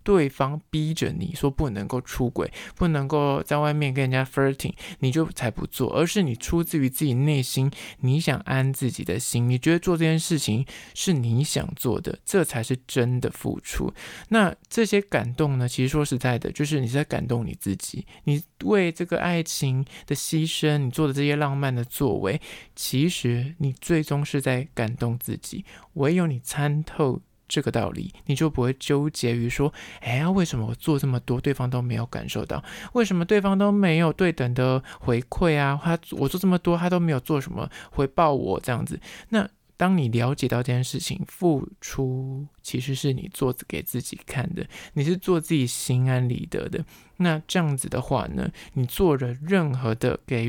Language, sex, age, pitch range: Chinese, male, 20-39, 125-165 Hz